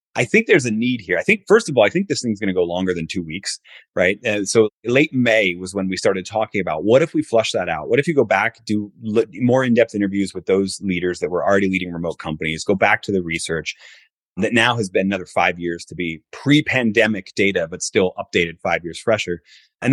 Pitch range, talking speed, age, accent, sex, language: 95-115 Hz, 245 wpm, 30-49, American, male, English